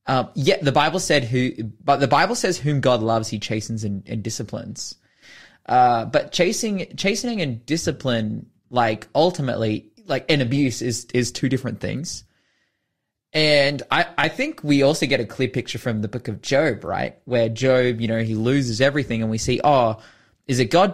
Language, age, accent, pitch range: English, 20-39, Australian, 110-135 Hz